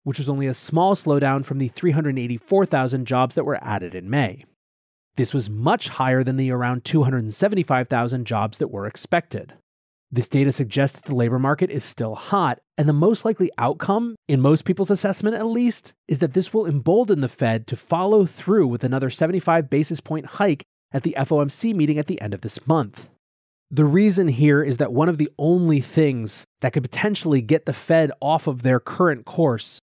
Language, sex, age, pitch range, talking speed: English, male, 30-49, 125-165 Hz, 190 wpm